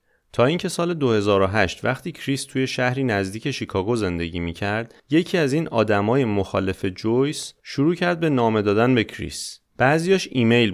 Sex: male